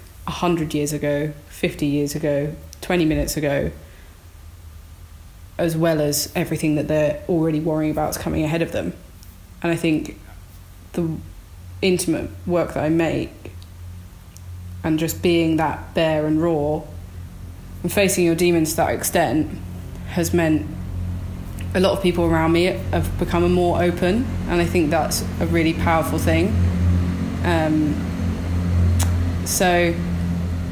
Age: 20-39